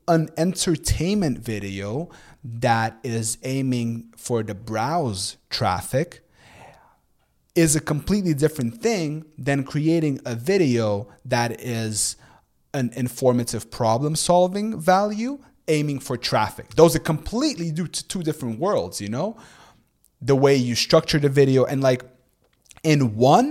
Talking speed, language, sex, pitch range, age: 125 wpm, English, male, 110-145 Hz, 30-49